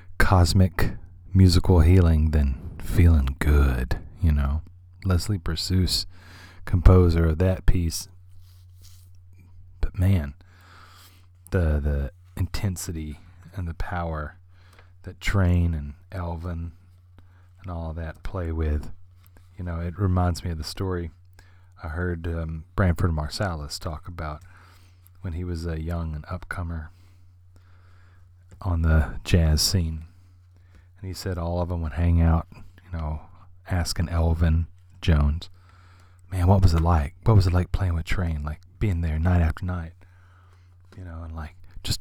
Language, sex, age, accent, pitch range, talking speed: English, male, 30-49, American, 85-90 Hz, 135 wpm